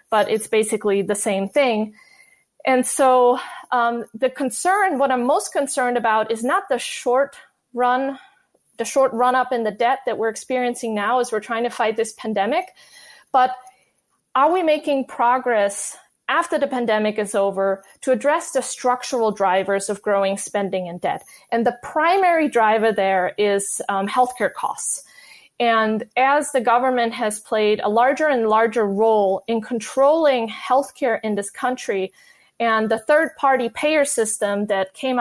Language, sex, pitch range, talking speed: English, female, 215-275 Hz, 160 wpm